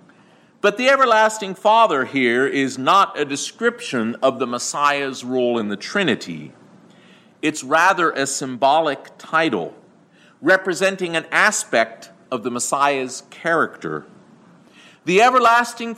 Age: 50-69